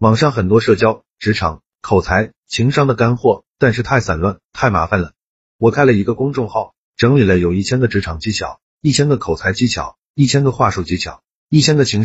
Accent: native